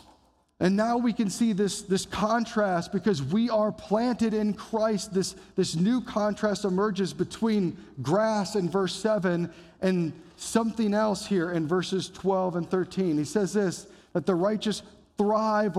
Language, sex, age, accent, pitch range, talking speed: English, male, 40-59, American, 140-195 Hz, 150 wpm